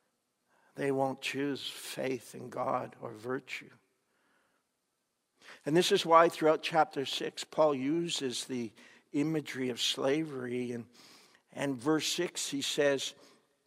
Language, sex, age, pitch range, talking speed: English, male, 60-79, 135-155 Hz, 120 wpm